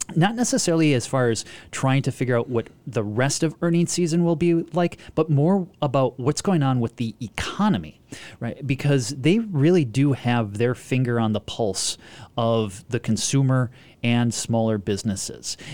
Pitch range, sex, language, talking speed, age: 115-150 Hz, male, English, 170 wpm, 30-49